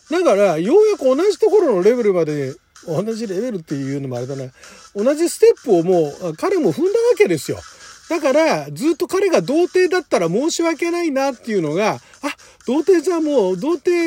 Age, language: 40-59, Japanese